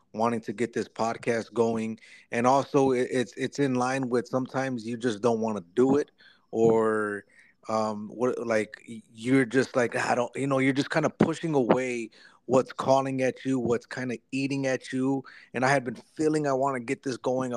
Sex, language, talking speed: male, English, 200 wpm